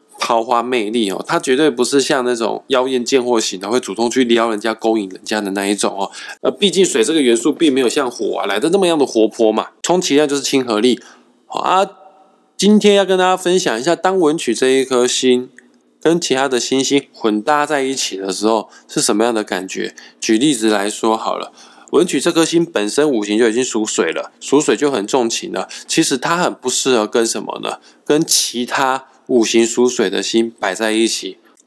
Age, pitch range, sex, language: 20-39, 110-140 Hz, male, Chinese